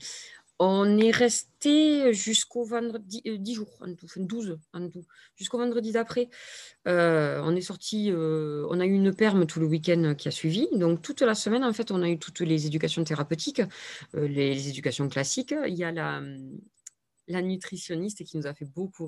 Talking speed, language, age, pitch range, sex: 190 wpm, French, 20-39, 145-200 Hz, female